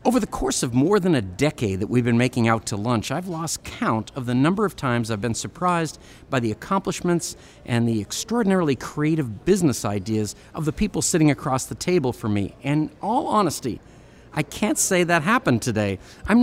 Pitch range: 125-175 Hz